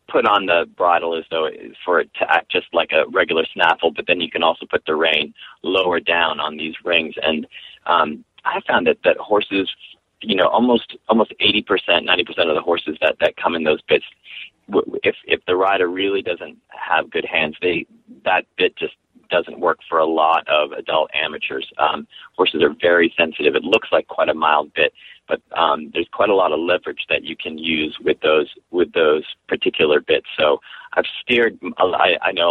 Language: English